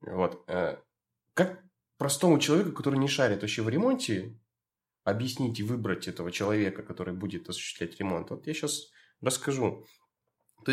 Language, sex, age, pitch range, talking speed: English, male, 20-39, 110-150 Hz, 135 wpm